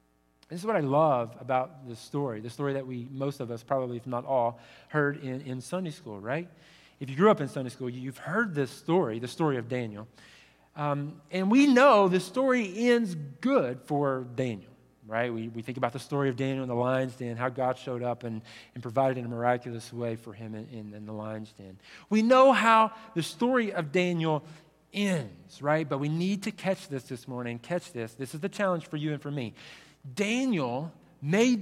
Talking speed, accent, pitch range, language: 215 wpm, American, 130-205 Hz, English